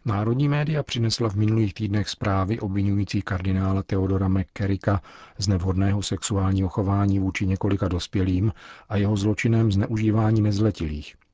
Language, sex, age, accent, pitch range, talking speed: Czech, male, 40-59, native, 90-105 Hz, 120 wpm